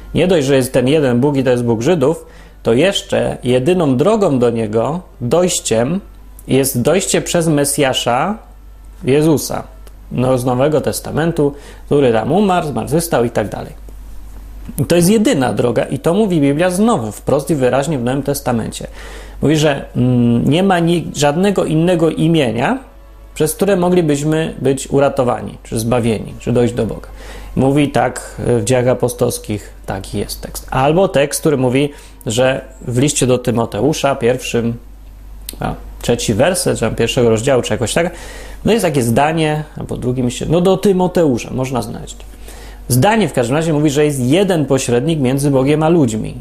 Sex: male